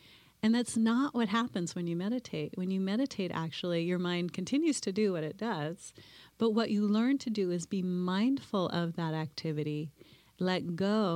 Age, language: 30-49, English